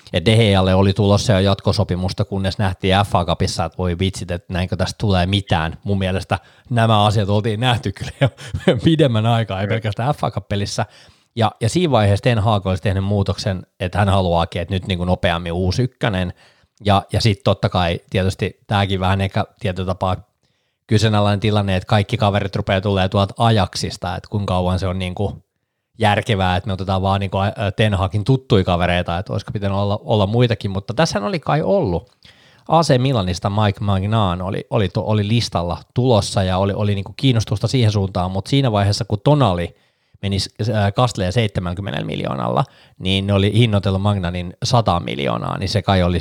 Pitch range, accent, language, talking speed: 95-115 Hz, native, Finnish, 175 wpm